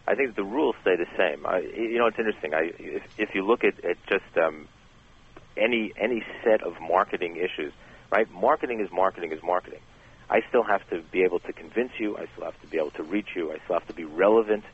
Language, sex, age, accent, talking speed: English, male, 40-59, American, 230 wpm